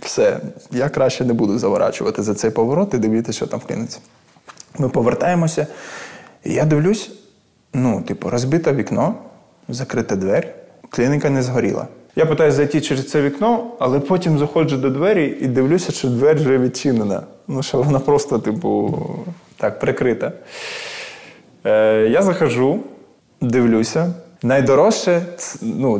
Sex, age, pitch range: male, 20-39, 120-175 Hz